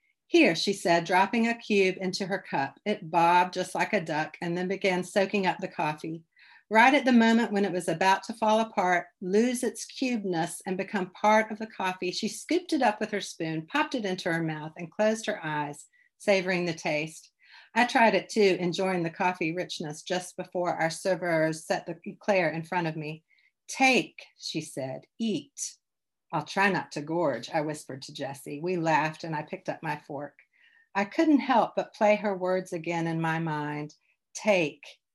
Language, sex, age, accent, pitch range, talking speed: English, female, 50-69, American, 165-215 Hz, 195 wpm